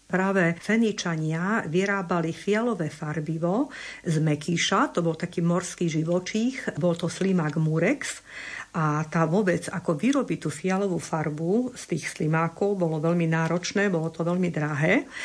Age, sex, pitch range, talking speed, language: 50-69, female, 160-185 Hz, 135 wpm, Slovak